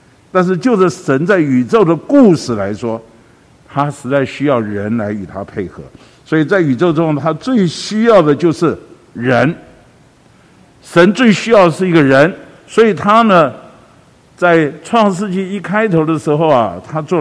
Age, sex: 50-69, male